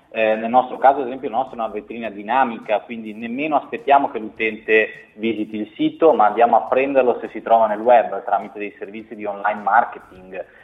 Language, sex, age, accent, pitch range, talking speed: Italian, male, 30-49, native, 105-140 Hz, 195 wpm